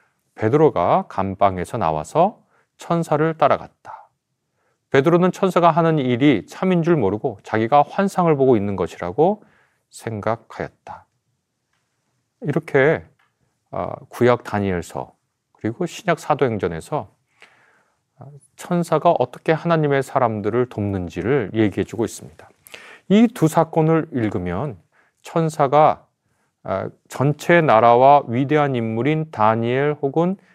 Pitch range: 105-155 Hz